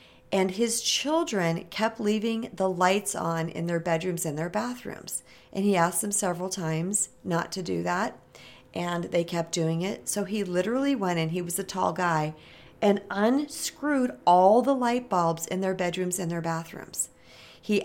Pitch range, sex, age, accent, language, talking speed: 170-220 Hz, female, 40-59, American, English, 175 wpm